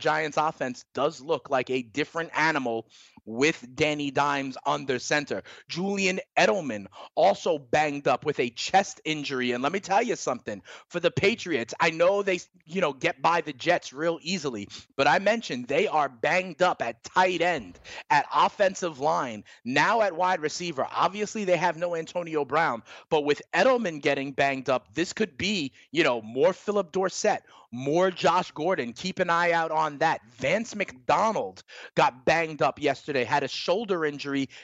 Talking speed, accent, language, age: 170 wpm, American, English, 30-49